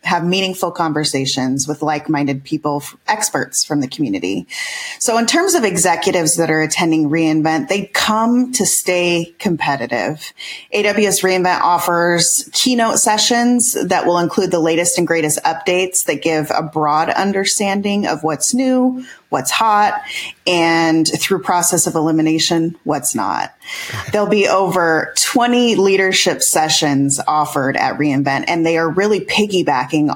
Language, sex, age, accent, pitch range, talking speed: English, female, 30-49, American, 155-195 Hz, 135 wpm